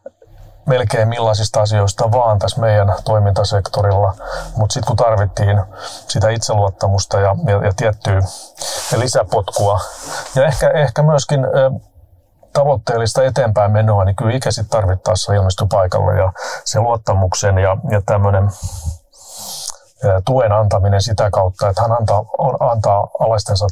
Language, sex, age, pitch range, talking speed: Finnish, male, 30-49, 95-115 Hz, 120 wpm